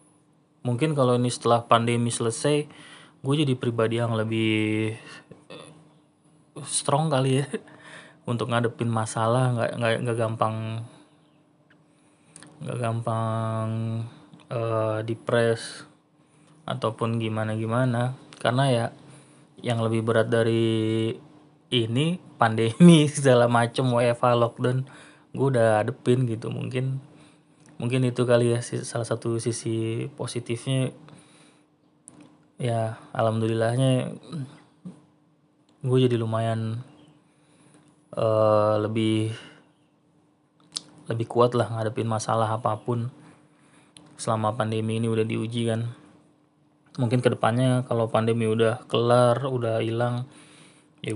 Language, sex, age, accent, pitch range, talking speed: Indonesian, male, 20-39, native, 115-150 Hz, 95 wpm